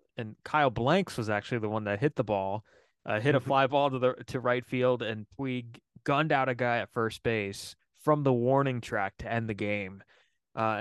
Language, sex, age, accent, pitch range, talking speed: English, male, 20-39, American, 110-130 Hz, 215 wpm